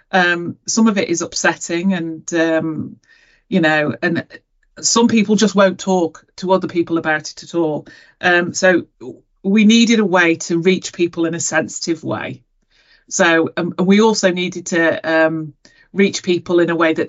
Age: 30-49